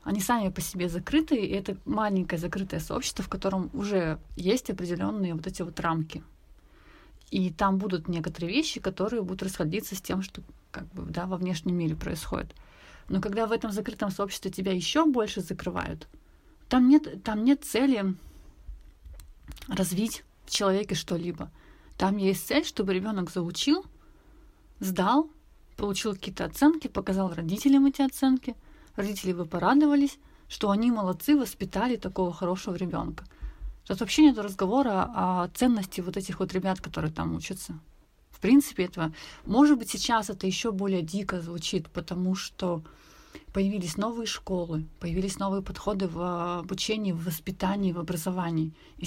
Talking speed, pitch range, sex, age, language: 145 wpm, 175-215 Hz, female, 30-49, Russian